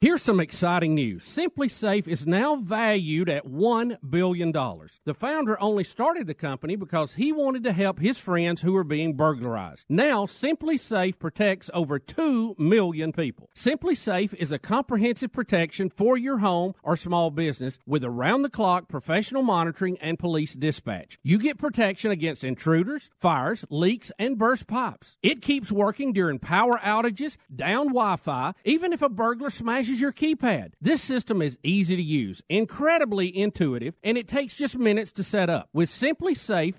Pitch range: 165-240 Hz